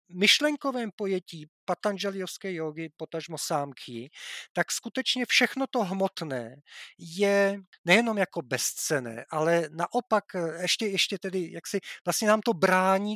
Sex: male